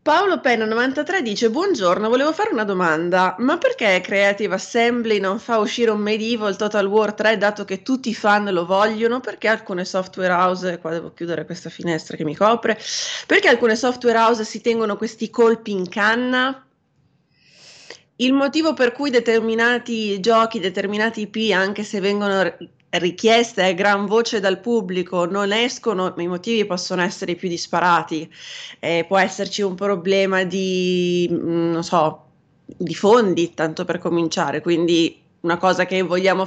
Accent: native